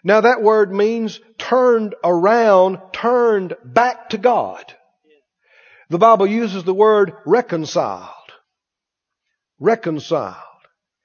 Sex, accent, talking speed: male, American, 90 wpm